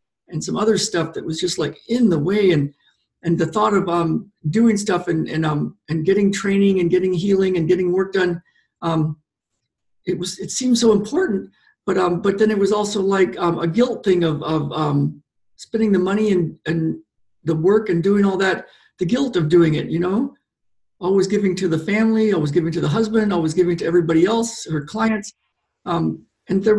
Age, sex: 50-69, male